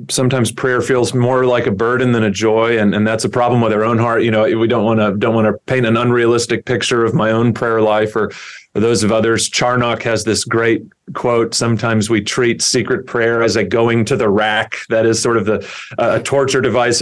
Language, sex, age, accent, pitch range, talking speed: English, male, 30-49, American, 110-125 Hz, 235 wpm